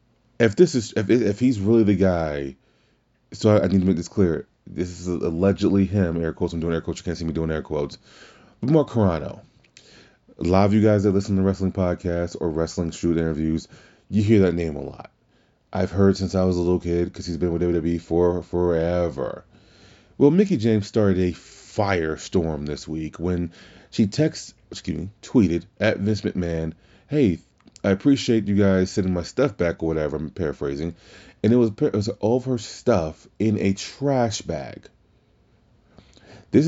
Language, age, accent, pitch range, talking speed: English, 30-49, American, 85-115 Hz, 190 wpm